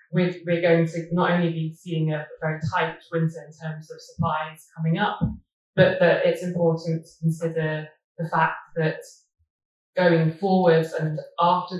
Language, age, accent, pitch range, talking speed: English, 20-39, British, 160-175 Hz, 155 wpm